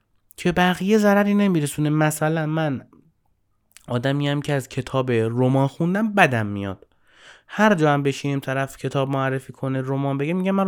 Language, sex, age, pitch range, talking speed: Persian, male, 30-49, 115-150 Hz, 150 wpm